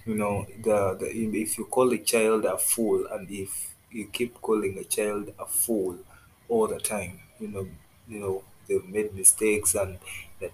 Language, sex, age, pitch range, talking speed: English, male, 20-39, 100-110 Hz, 180 wpm